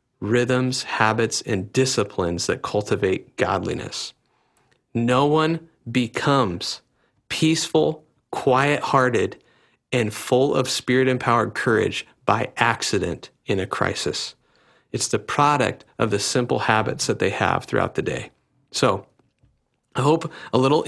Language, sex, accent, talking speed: English, male, American, 115 wpm